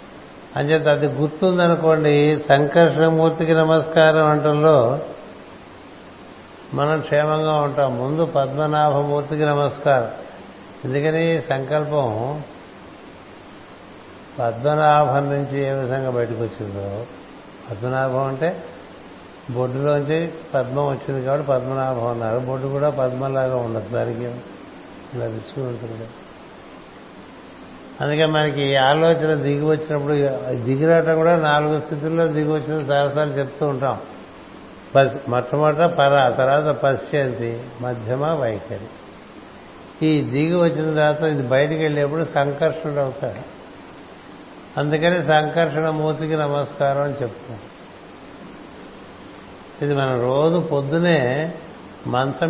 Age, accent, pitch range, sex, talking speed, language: 60-79, native, 130-155 Hz, male, 85 wpm, Telugu